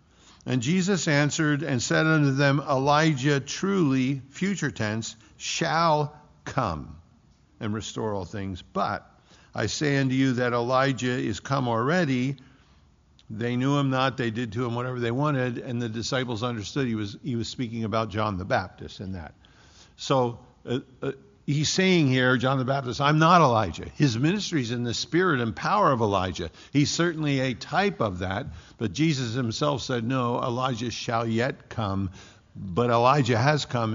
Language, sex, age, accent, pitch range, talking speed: English, male, 50-69, American, 110-145 Hz, 165 wpm